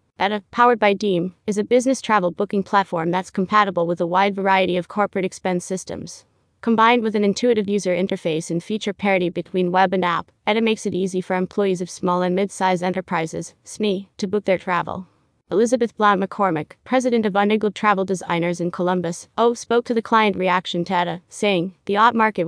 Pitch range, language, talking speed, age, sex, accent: 180-210 Hz, English, 190 wpm, 30-49, female, American